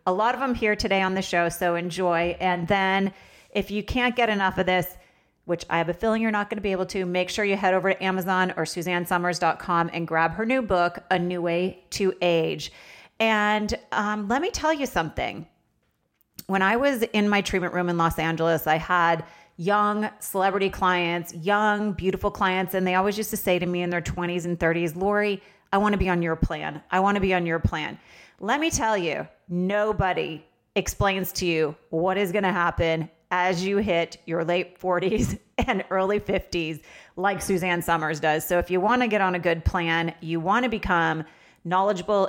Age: 30-49